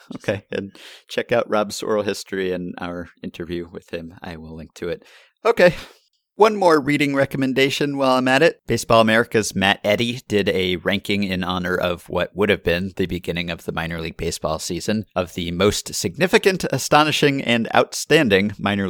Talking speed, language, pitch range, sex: 180 wpm, English, 90-115 Hz, male